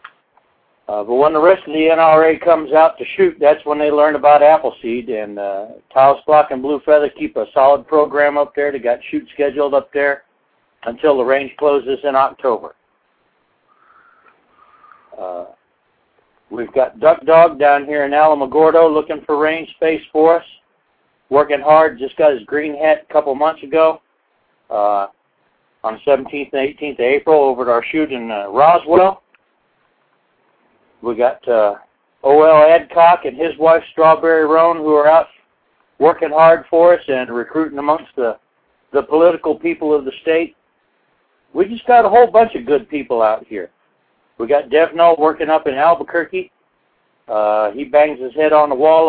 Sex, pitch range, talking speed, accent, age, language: male, 140-165 Hz, 165 wpm, American, 60-79, English